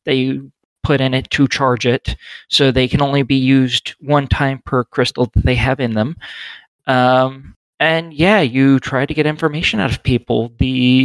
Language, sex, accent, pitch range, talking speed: English, male, American, 125-155 Hz, 185 wpm